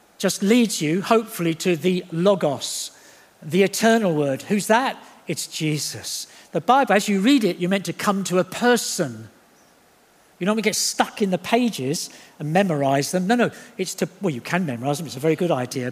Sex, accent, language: male, British, English